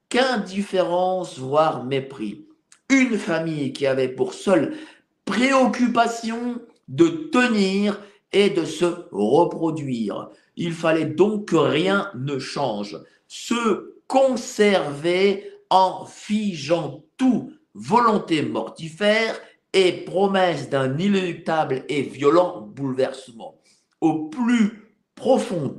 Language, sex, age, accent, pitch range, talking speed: French, male, 50-69, French, 160-235 Hz, 95 wpm